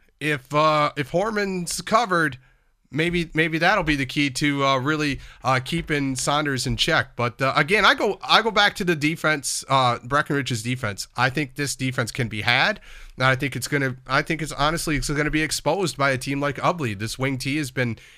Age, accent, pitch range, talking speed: 40-59, American, 130-155 Hz, 215 wpm